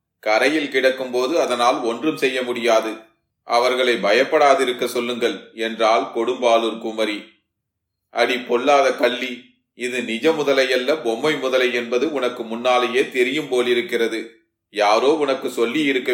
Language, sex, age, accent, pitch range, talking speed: Tamil, male, 30-49, native, 115-135 Hz, 110 wpm